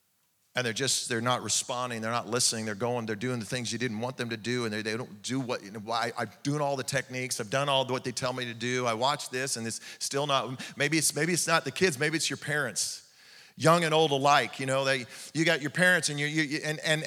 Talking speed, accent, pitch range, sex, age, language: 280 wpm, American, 135-190 Hz, male, 40-59, English